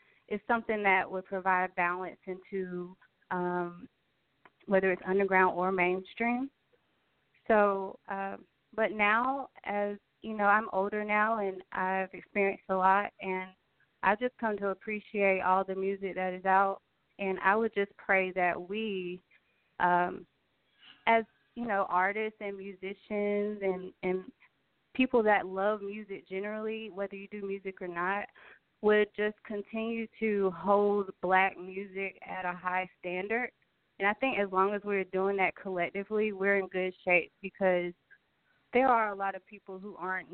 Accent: American